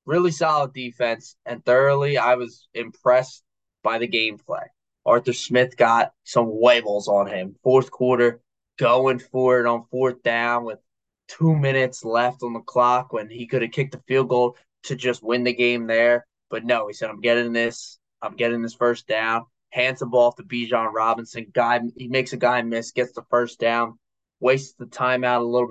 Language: English